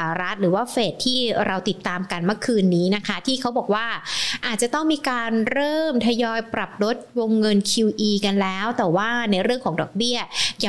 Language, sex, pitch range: Thai, female, 200-245 Hz